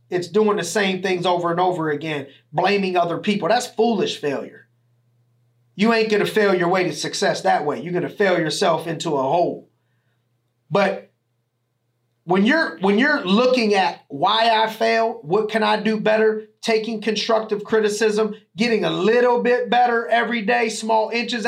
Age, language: 30-49, English